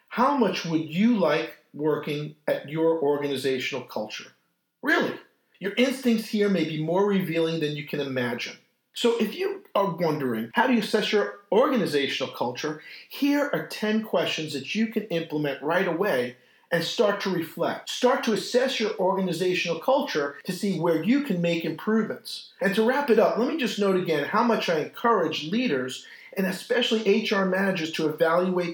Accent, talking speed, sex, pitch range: American, 170 wpm, male, 160-230 Hz